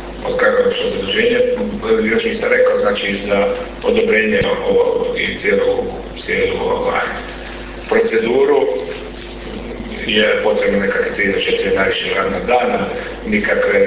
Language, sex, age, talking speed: Croatian, male, 40-59, 90 wpm